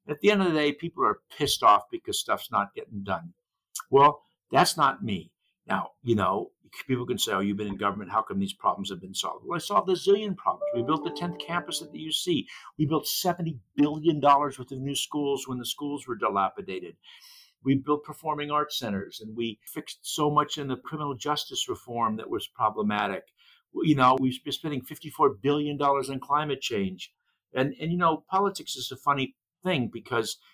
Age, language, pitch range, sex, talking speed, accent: 60-79, English, 125-175 Hz, male, 200 wpm, American